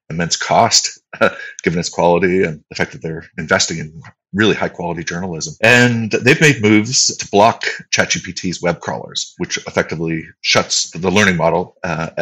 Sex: male